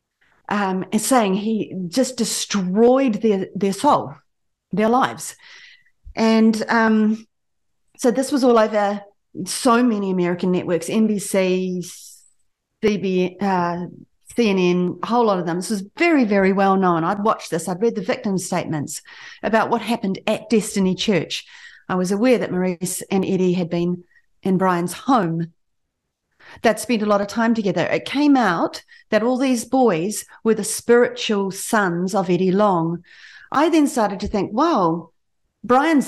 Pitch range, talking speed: 185-250 Hz, 150 wpm